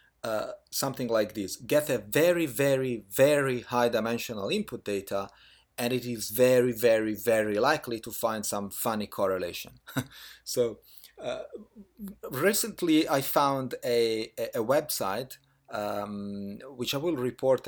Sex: male